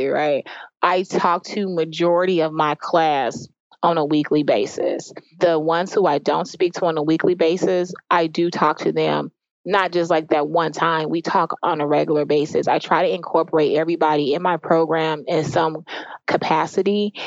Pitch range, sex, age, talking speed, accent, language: 160-180 Hz, female, 20-39, 175 wpm, American, English